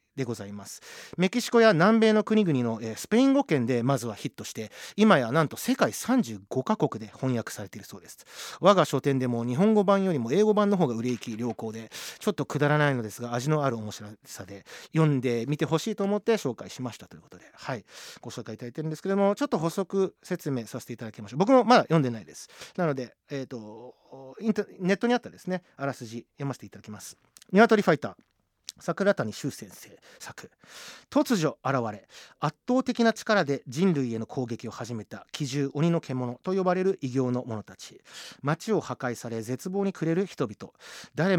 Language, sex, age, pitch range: Japanese, male, 30-49, 120-195 Hz